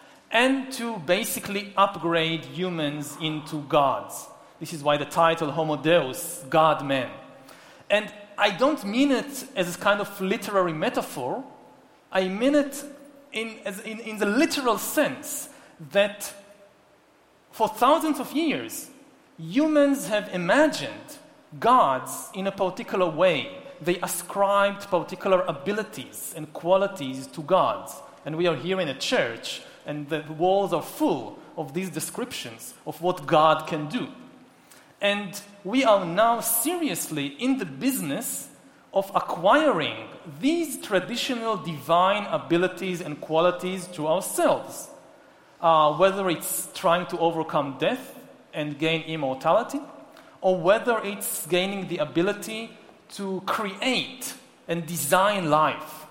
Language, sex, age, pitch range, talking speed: English, male, 40-59, 165-255 Hz, 125 wpm